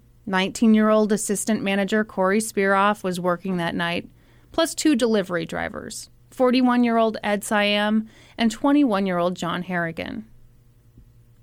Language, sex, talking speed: English, female, 105 wpm